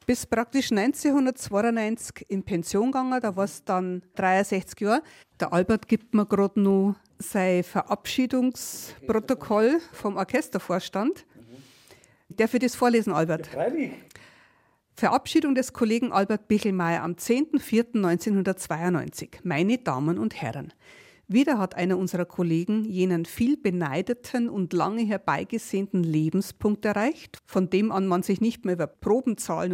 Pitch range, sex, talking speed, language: 180-225 Hz, female, 120 wpm, German